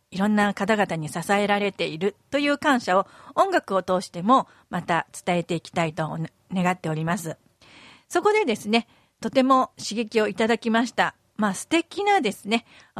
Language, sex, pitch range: Japanese, female, 180-270 Hz